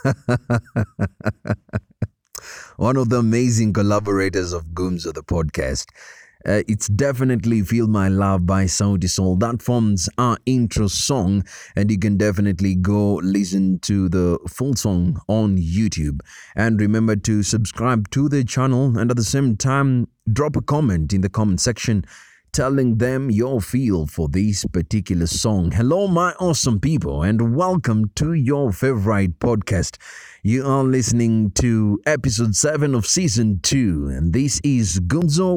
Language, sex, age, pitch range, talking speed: English, male, 30-49, 95-130 Hz, 145 wpm